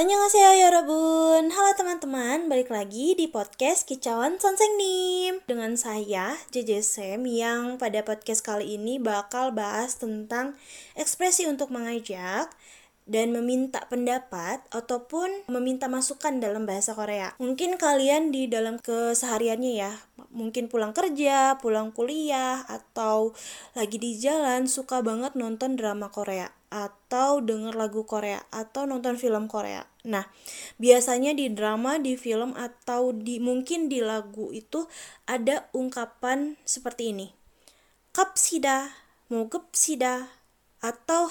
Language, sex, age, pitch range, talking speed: Indonesian, female, 20-39, 225-280 Hz, 120 wpm